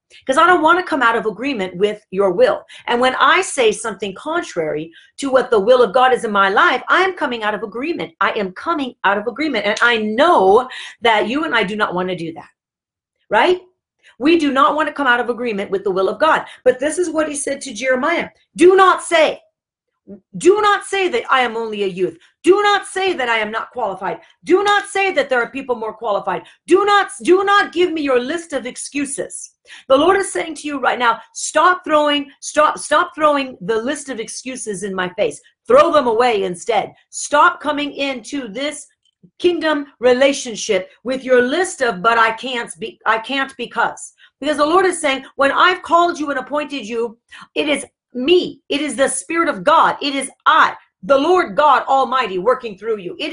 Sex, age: female, 40-59